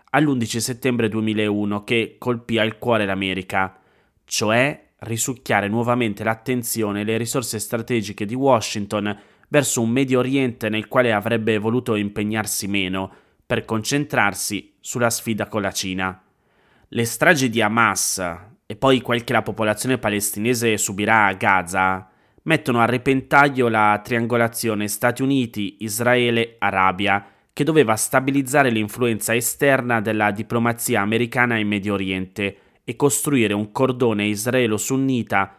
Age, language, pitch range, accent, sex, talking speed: 20-39, Italian, 105-125 Hz, native, male, 120 wpm